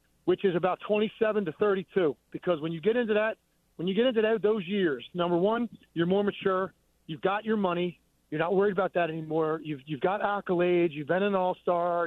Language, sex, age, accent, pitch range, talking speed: English, male, 40-59, American, 175-215 Hz, 210 wpm